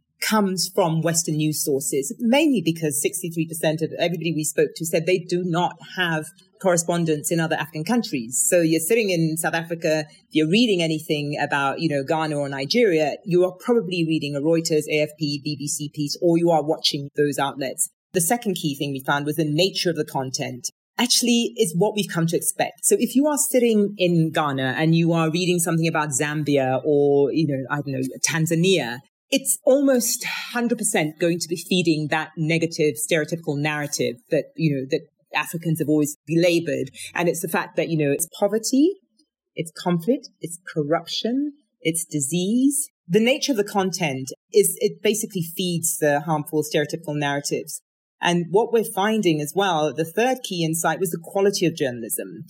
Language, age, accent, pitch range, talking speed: English, 40-59, British, 150-190 Hz, 180 wpm